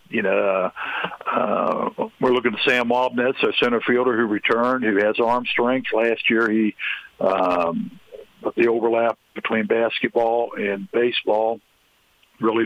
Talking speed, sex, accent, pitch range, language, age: 140 wpm, male, American, 110-120 Hz, English, 60-79